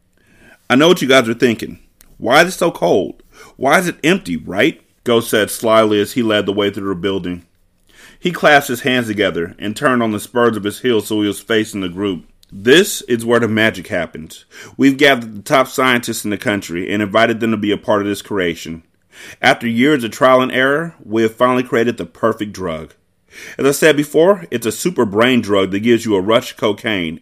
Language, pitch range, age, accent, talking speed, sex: English, 100-125 Hz, 30-49, American, 220 wpm, male